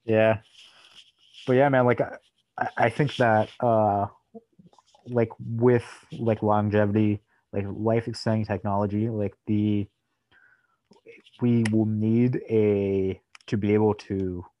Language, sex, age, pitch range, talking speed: English, male, 30-49, 95-110 Hz, 110 wpm